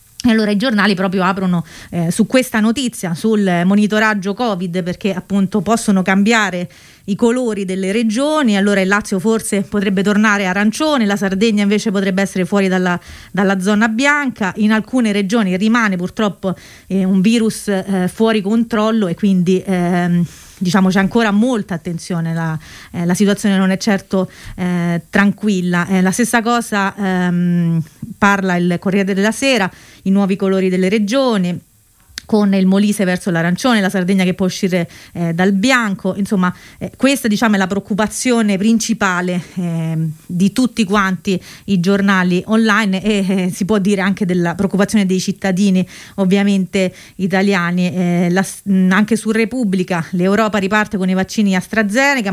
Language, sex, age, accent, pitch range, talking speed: Italian, female, 30-49, native, 185-215 Hz, 150 wpm